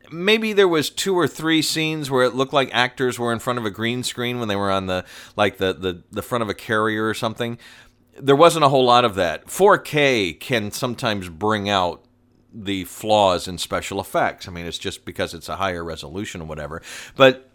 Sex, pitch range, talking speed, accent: male, 90-120 Hz, 215 wpm, American